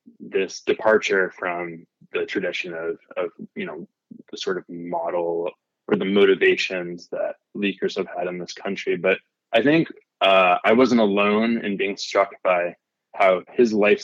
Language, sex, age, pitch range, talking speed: English, male, 20-39, 90-125 Hz, 160 wpm